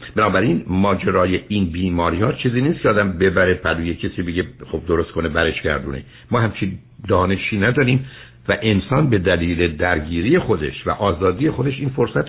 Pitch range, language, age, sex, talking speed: 85-120 Hz, Persian, 60-79, male, 160 wpm